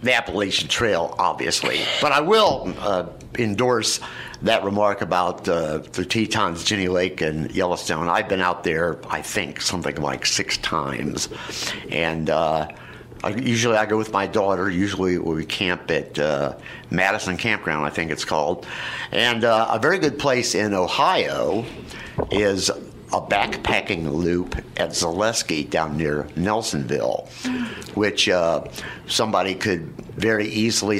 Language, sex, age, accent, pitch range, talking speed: English, male, 60-79, American, 85-110 Hz, 135 wpm